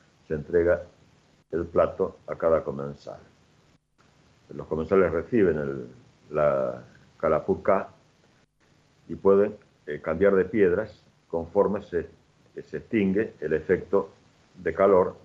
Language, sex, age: Spanish, male, 60-79